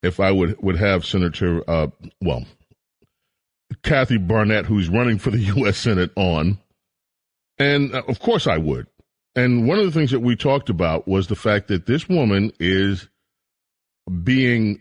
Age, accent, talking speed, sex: 40-59, American, 160 wpm, male